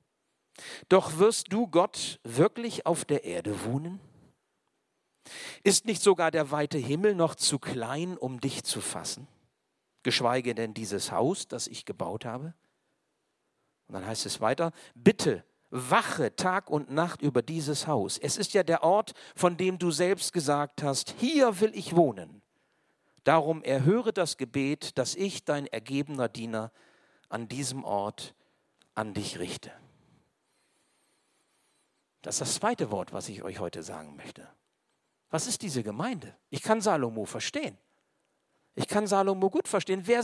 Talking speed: 145 wpm